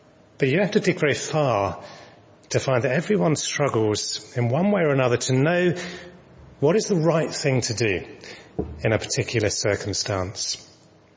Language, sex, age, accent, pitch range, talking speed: English, male, 30-49, British, 125-155 Hz, 160 wpm